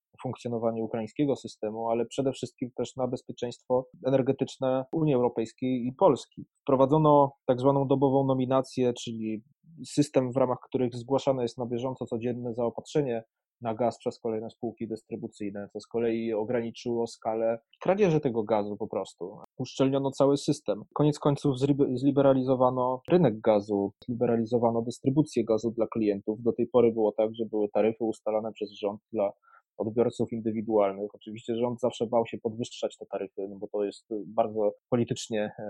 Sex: male